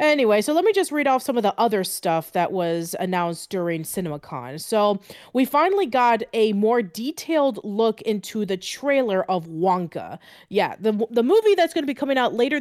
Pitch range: 180-235 Hz